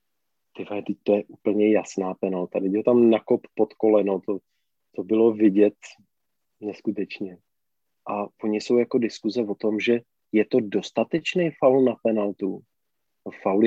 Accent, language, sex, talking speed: native, Czech, male, 135 wpm